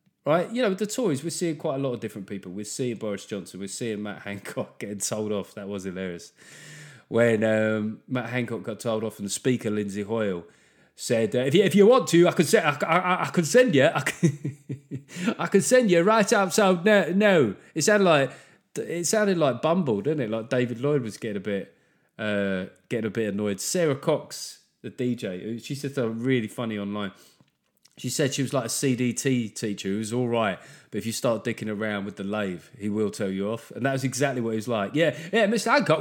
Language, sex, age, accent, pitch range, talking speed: English, male, 20-39, British, 110-165 Hz, 230 wpm